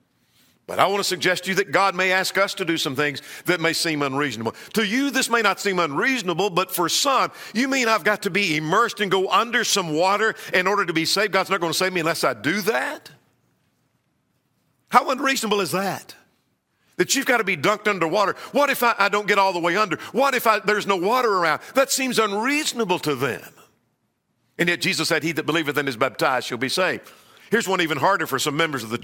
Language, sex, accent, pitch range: English, male, American, 160-220 Hz